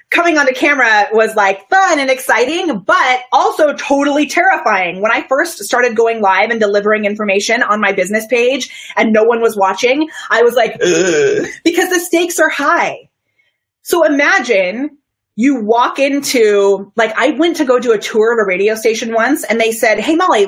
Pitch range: 210-295 Hz